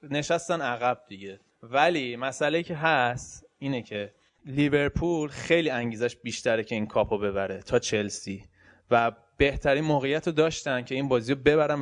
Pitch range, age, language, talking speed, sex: 120-145 Hz, 20-39, Persian, 145 wpm, male